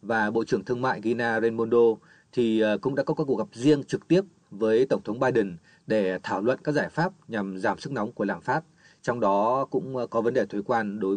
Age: 20-39